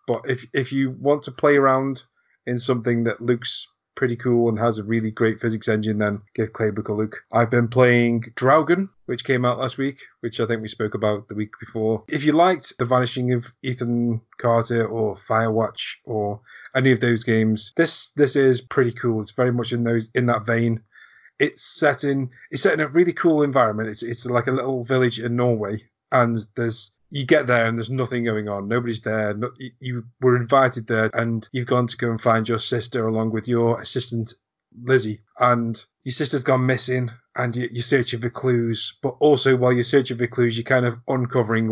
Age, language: 30-49, English